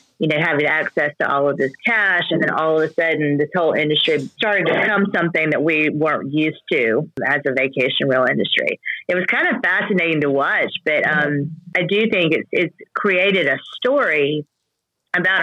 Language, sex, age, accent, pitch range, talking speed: English, female, 40-59, American, 145-180 Hz, 190 wpm